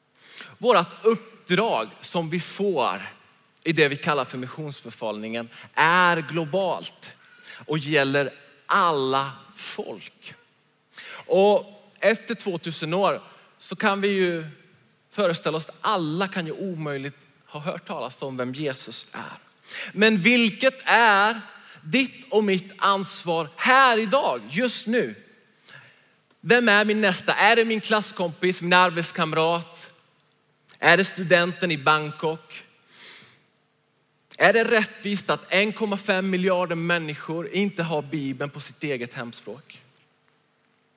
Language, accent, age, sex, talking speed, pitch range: Swedish, native, 30-49, male, 115 wpm, 145-200 Hz